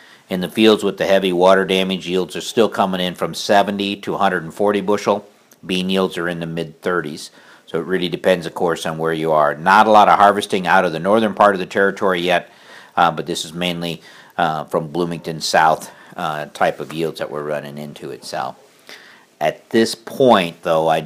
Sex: male